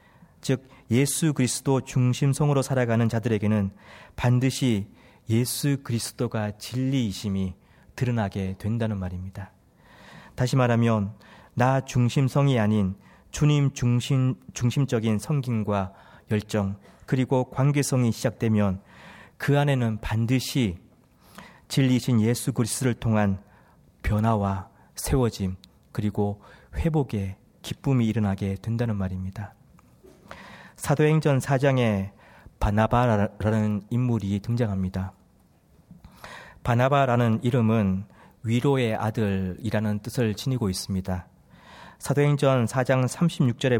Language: Korean